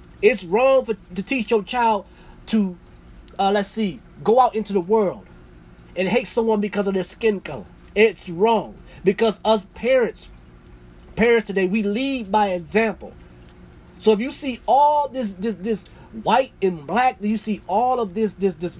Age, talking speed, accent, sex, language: 30-49, 170 wpm, American, male, English